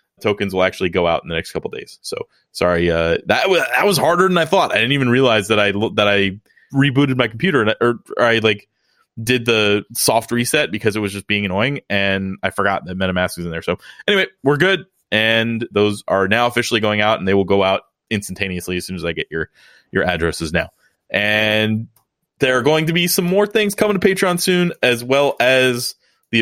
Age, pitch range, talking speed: 20-39, 105-130 Hz, 225 wpm